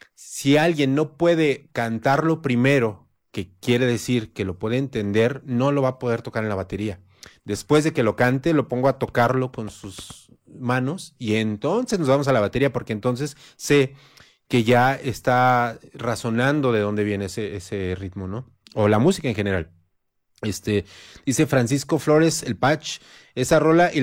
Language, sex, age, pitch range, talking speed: Spanish, male, 30-49, 110-145 Hz, 170 wpm